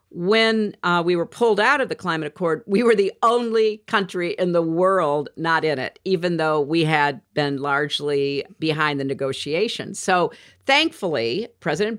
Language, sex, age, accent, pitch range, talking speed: English, female, 50-69, American, 145-190 Hz, 165 wpm